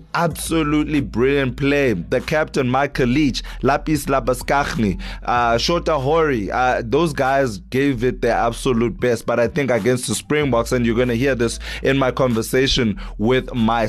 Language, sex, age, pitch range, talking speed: English, male, 20-39, 110-130 Hz, 160 wpm